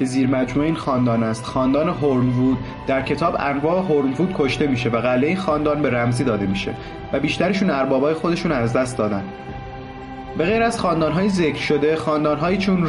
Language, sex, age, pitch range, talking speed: Persian, male, 30-49, 130-165 Hz, 170 wpm